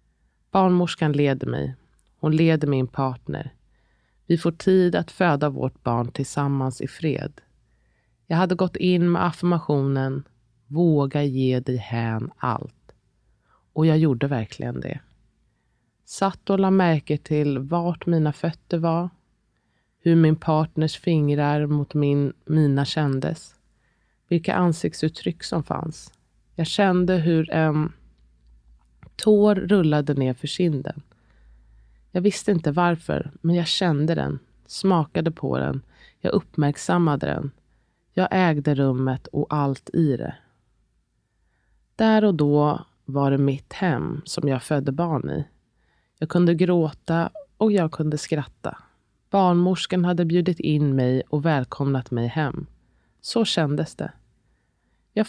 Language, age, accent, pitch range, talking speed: Swedish, 20-39, native, 135-175 Hz, 125 wpm